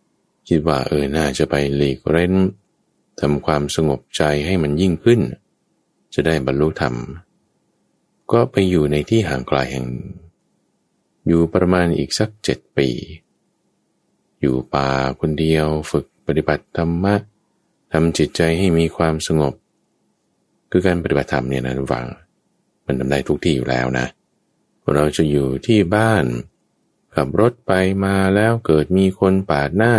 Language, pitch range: English, 65-90 Hz